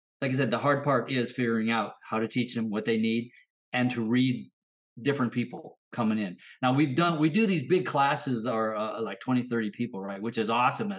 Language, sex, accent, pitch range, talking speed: English, male, American, 110-135 Hz, 230 wpm